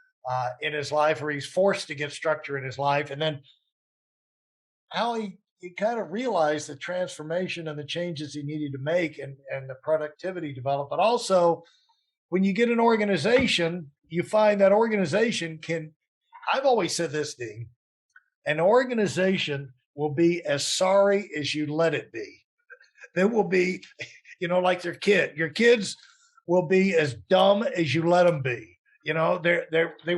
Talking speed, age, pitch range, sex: 175 wpm, 50-69, 155-200 Hz, male